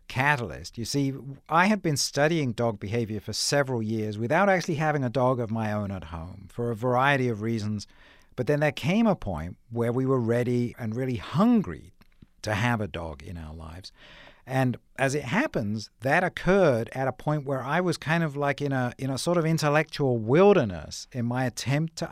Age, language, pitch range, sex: 60-79, English, 105-140 Hz, male